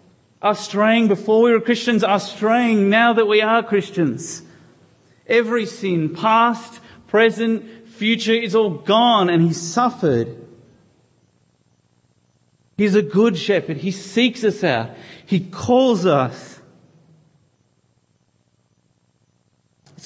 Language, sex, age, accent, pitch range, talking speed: English, male, 40-59, Australian, 165-230 Hz, 110 wpm